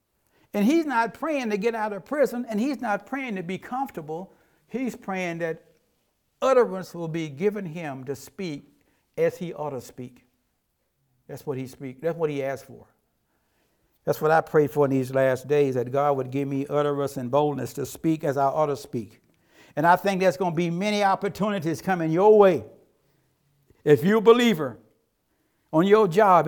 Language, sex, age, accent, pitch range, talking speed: English, male, 60-79, American, 135-195 Hz, 190 wpm